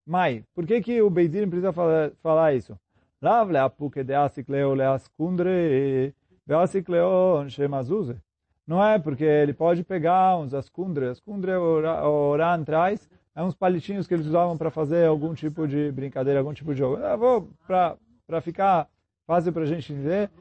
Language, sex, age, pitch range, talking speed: Portuguese, male, 30-49, 130-185 Hz, 140 wpm